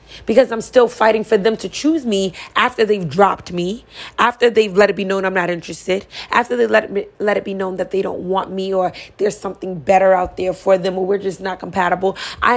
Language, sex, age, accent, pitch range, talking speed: English, female, 30-49, American, 190-235 Hz, 230 wpm